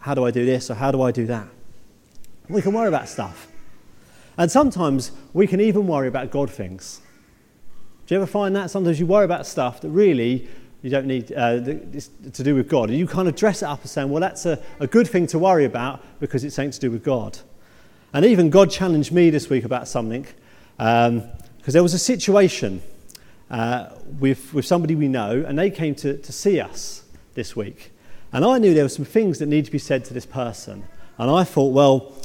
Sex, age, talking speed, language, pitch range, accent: male, 40-59, 225 wpm, English, 120-165 Hz, British